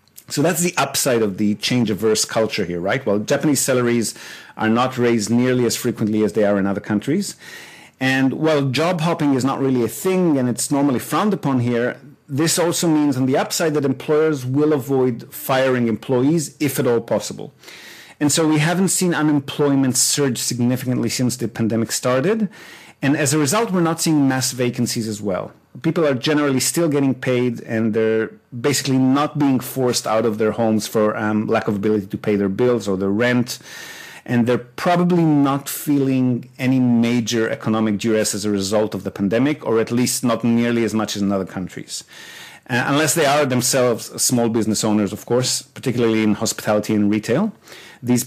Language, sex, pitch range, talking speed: English, male, 110-140 Hz, 185 wpm